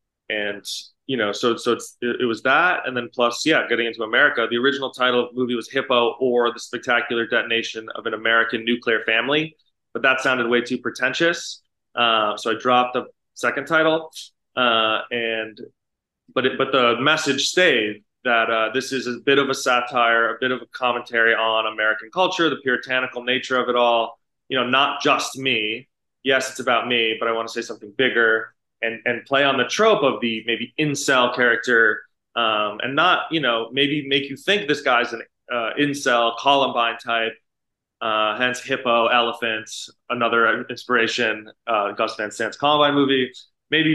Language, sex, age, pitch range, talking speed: English, male, 20-39, 115-135 Hz, 180 wpm